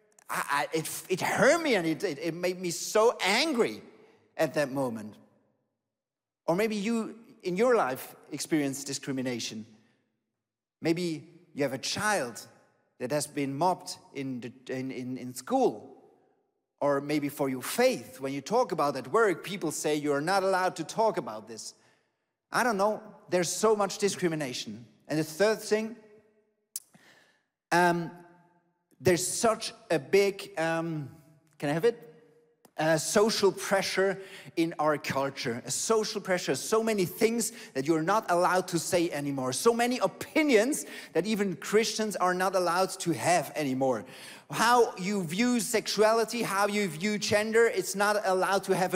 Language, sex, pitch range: English, male, 155-215 Hz